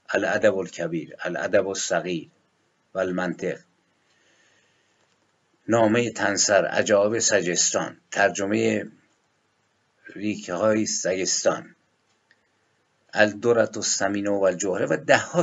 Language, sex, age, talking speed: Persian, male, 50-69, 70 wpm